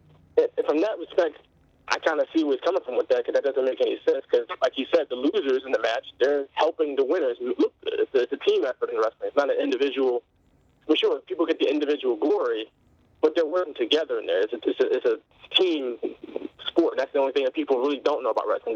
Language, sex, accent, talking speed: English, male, American, 230 wpm